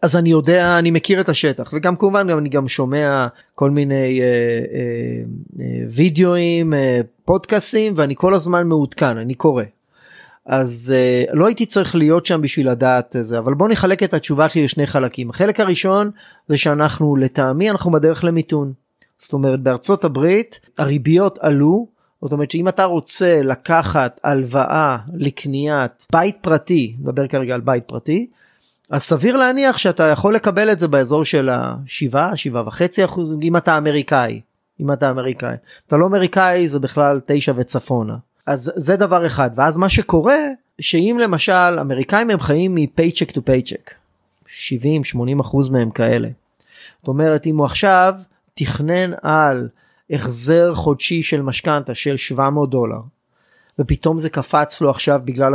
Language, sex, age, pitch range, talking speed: Hebrew, male, 30-49, 135-175 Hz, 150 wpm